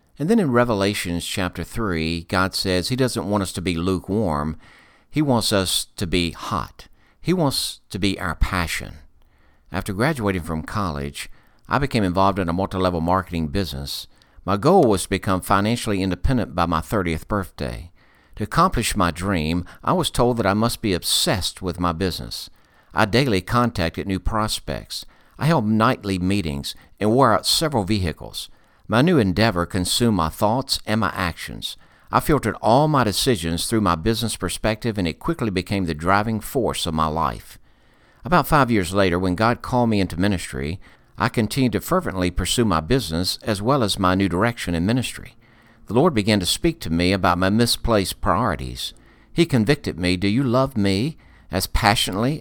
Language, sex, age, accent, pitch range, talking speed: English, male, 60-79, American, 85-115 Hz, 175 wpm